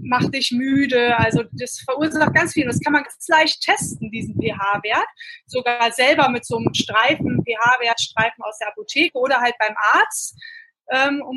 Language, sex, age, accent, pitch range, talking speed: German, female, 20-39, German, 220-275 Hz, 165 wpm